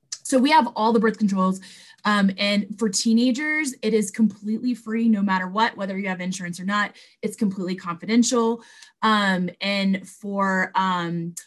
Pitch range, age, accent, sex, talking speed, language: 185-225 Hz, 20-39, American, female, 160 wpm, English